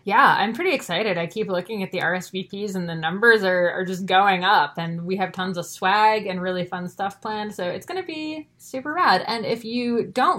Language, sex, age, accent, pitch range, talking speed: English, female, 20-39, American, 175-220 Hz, 230 wpm